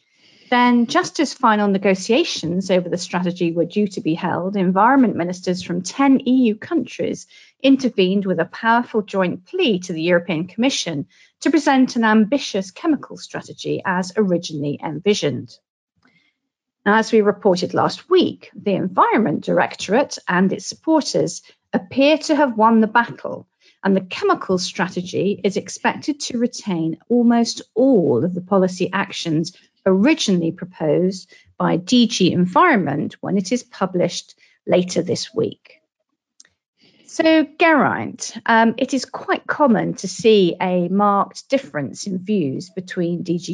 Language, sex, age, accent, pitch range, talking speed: English, female, 40-59, British, 180-245 Hz, 135 wpm